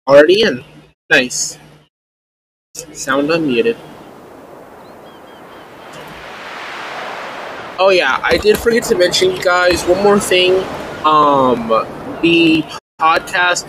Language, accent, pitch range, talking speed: English, American, 145-185 Hz, 90 wpm